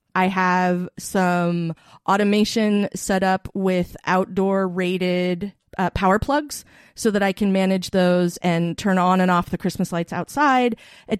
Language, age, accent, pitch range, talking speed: English, 30-49, American, 175-205 Hz, 150 wpm